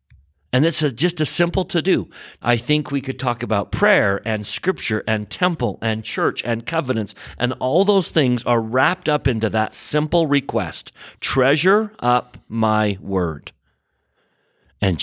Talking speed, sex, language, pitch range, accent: 155 wpm, male, English, 105-150 Hz, American